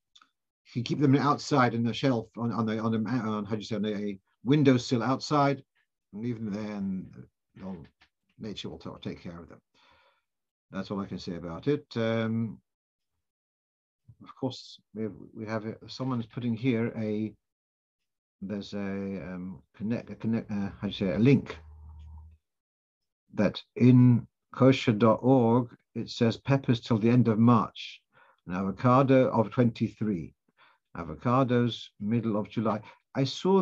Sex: male